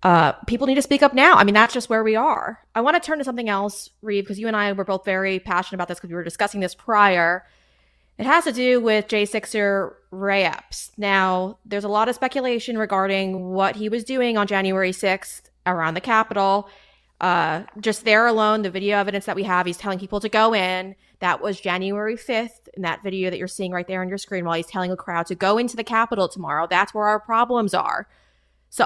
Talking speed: 230 wpm